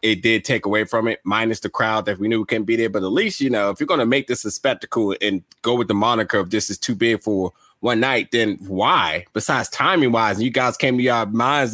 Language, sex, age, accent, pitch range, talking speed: English, male, 20-39, American, 105-140 Hz, 265 wpm